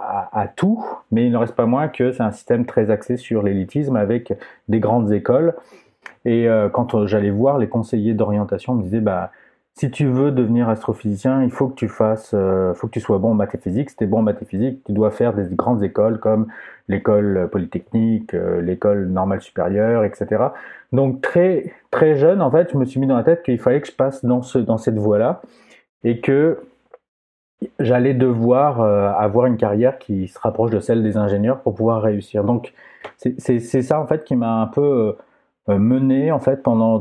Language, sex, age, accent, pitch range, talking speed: English, male, 30-49, French, 105-130 Hz, 205 wpm